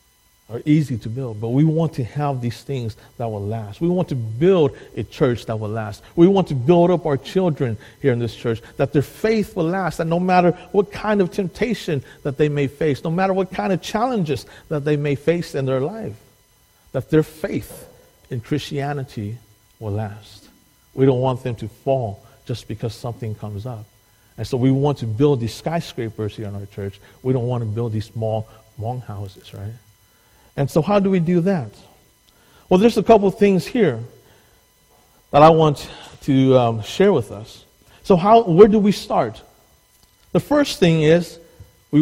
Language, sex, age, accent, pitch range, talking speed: English, male, 50-69, American, 110-165 Hz, 195 wpm